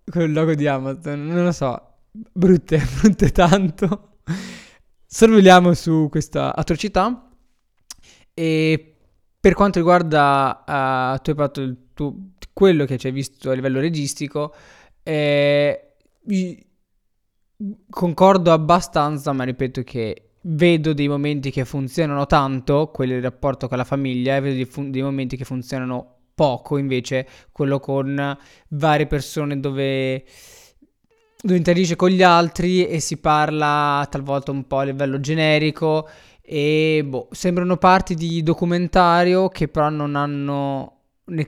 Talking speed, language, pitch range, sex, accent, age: 135 wpm, Italian, 135-170 Hz, male, native, 20-39